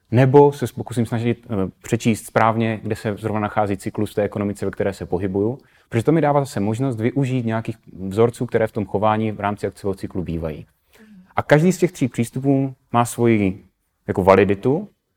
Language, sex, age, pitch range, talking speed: Czech, male, 30-49, 100-125 Hz, 180 wpm